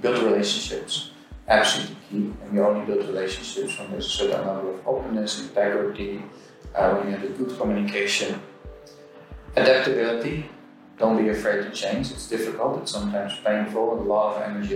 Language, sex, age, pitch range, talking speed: English, male, 30-49, 100-120 Hz, 160 wpm